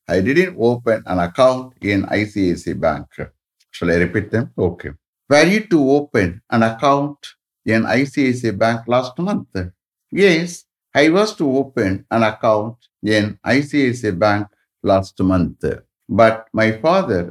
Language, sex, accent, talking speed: English, male, Indian, 135 wpm